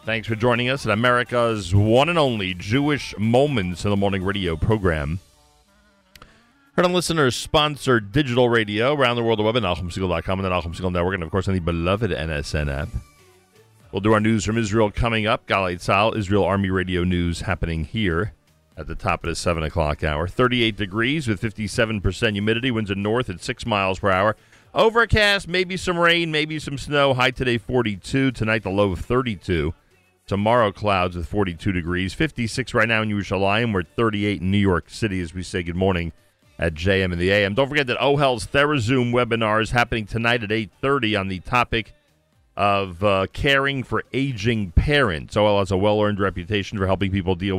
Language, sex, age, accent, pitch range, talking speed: English, male, 40-59, American, 95-120 Hz, 185 wpm